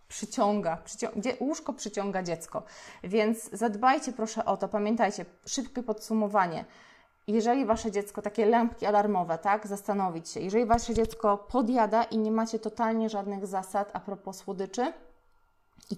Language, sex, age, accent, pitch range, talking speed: Polish, female, 20-39, native, 195-225 Hz, 140 wpm